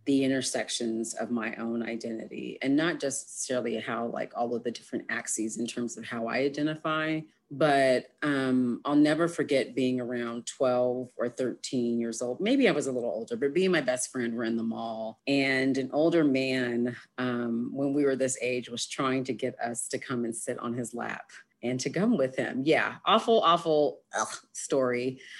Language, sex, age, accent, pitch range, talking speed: English, female, 30-49, American, 120-140 Hz, 190 wpm